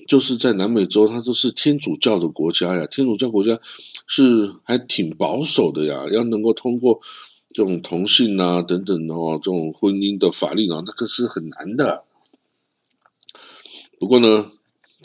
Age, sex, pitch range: 50-69, male, 90-120 Hz